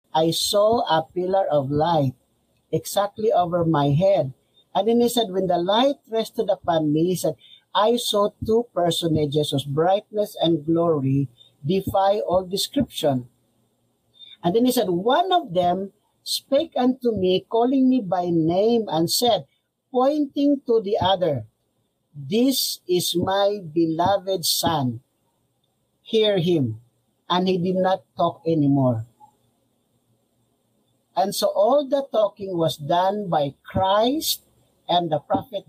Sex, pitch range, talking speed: male, 150-215 Hz, 130 wpm